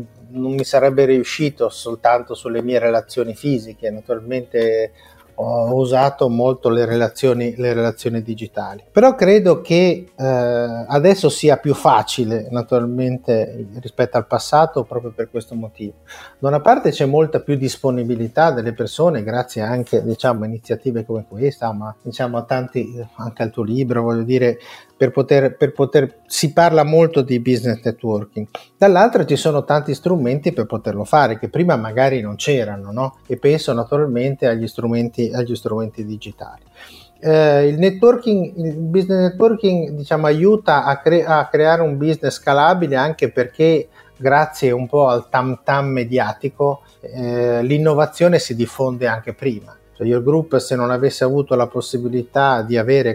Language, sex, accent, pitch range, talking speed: Italian, male, native, 120-145 Hz, 150 wpm